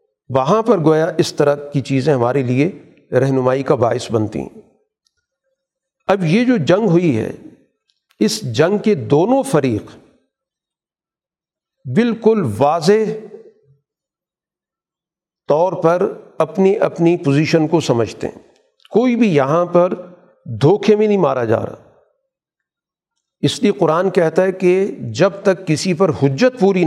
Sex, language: male, Urdu